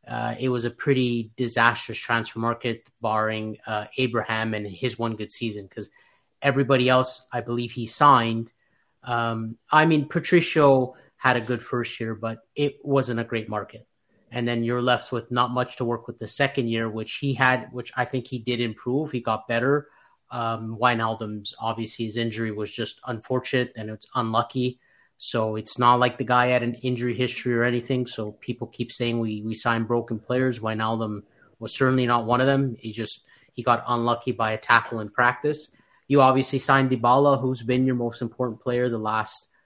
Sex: male